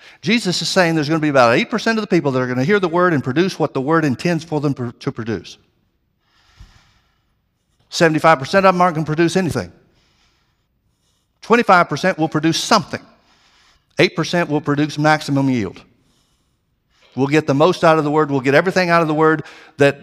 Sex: male